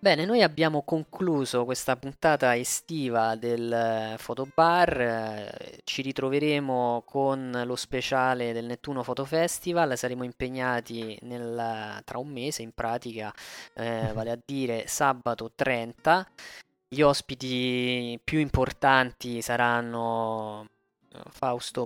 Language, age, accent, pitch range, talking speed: Italian, 20-39, native, 115-130 Hz, 105 wpm